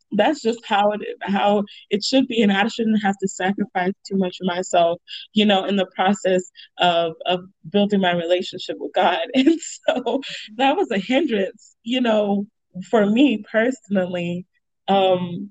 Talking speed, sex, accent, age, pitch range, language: 165 wpm, female, American, 20-39, 190-225 Hz, English